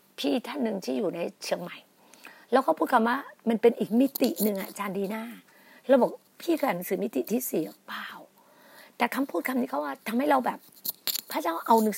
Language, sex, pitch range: Thai, female, 225-300 Hz